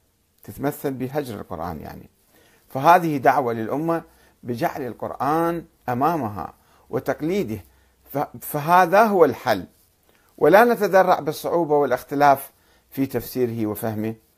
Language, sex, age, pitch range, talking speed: Arabic, male, 50-69, 110-145 Hz, 90 wpm